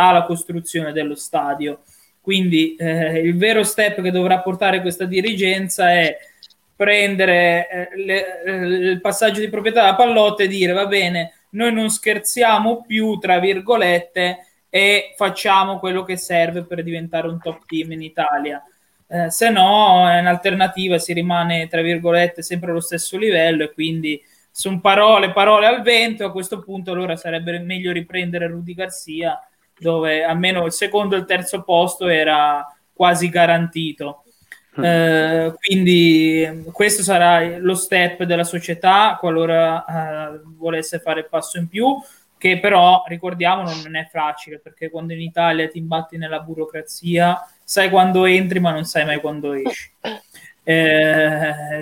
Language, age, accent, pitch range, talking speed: Italian, 20-39, native, 165-195 Hz, 145 wpm